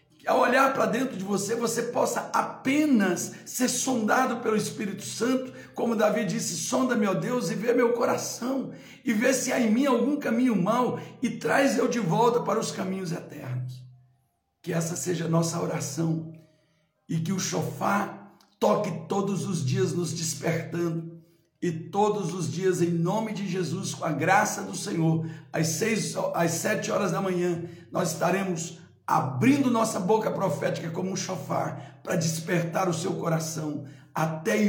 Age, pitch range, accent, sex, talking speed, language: 60-79, 165-215 Hz, Brazilian, male, 160 wpm, Portuguese